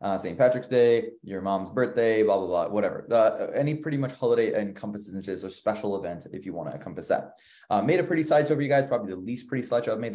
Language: English